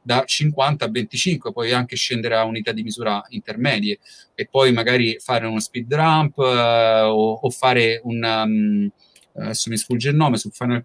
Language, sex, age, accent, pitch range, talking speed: Italian, male, 30-49, native, 115-135 Hz, 175 wpm